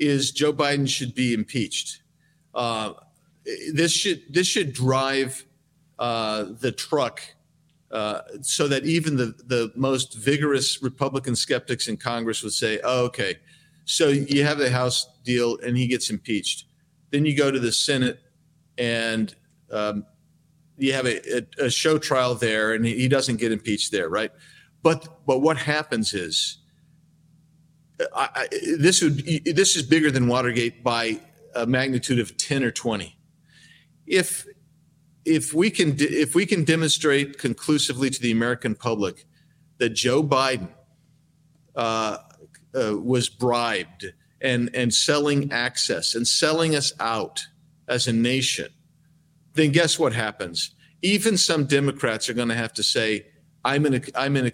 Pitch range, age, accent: 120-160 Hz, 40-59, American